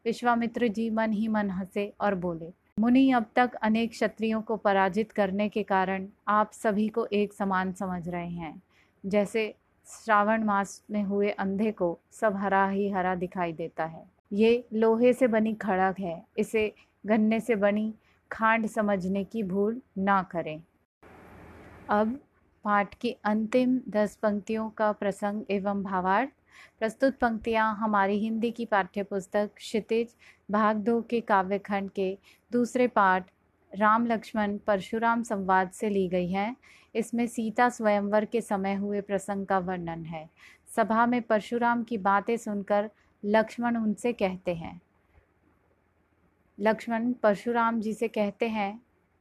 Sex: female